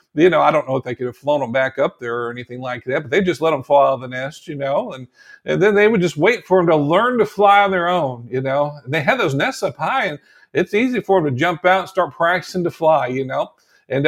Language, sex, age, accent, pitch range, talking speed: English, male, 50-69, American, 145-180 Hz, 305 wpm